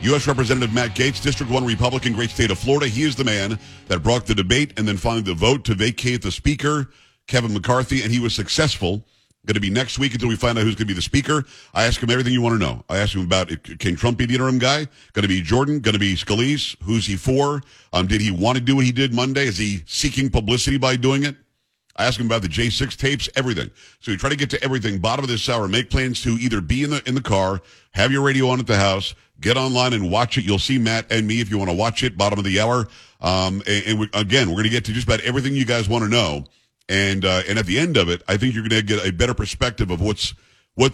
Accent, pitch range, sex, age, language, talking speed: American, 100-130 Hz, male, 50-69, English, 275 wpm